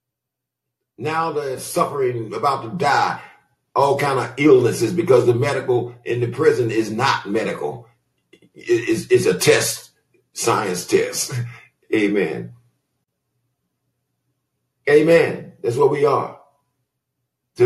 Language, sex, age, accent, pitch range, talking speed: English, male, 50-69, American, 115-180 Hz, 110 wpm